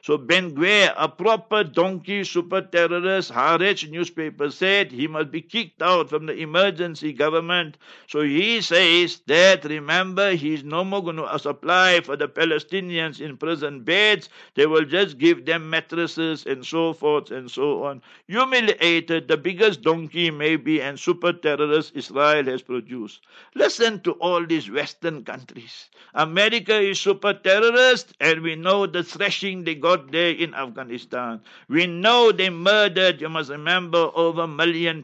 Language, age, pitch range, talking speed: English, 60-79, 160-195 Hz, 155 wpm